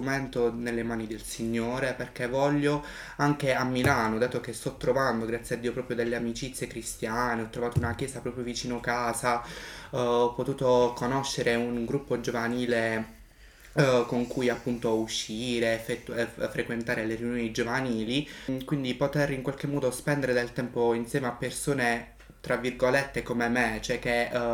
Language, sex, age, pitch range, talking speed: Italian, male, 20-39, 115-135 Hz, 140 wpm